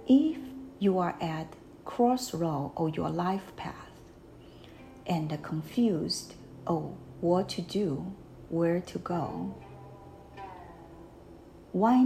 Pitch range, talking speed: 150-225 Hz, 100 wpm